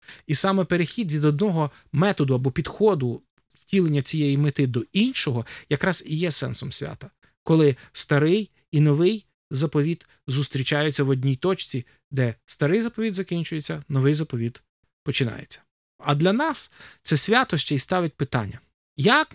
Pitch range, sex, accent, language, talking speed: 130-185 Hz, male, native, Ukrainian, 135 wpm